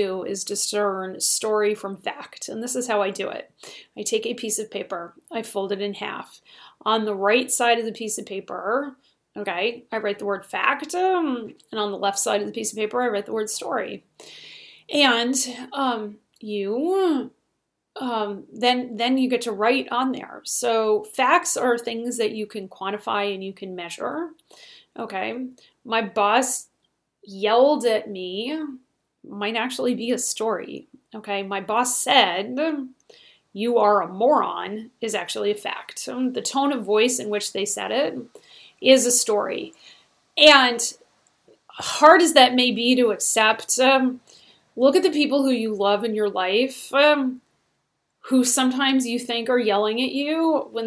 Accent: American